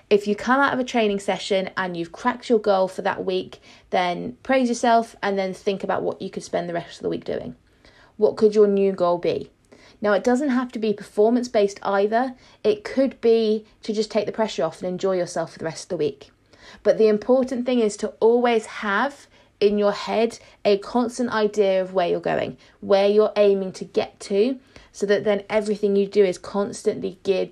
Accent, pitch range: British, 195-230 Hz